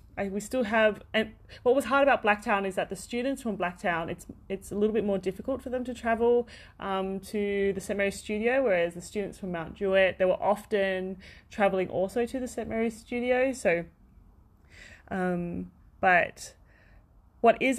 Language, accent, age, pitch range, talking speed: English, Australian, 30-49, 180-225 Hz, 180 wpm